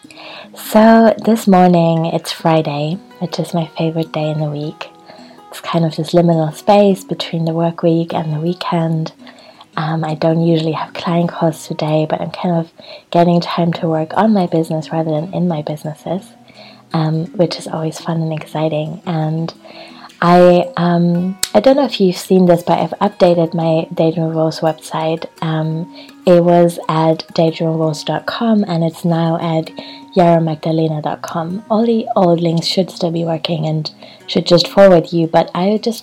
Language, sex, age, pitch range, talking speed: English, female, 20-39, 160-175 Hz, 165 wpm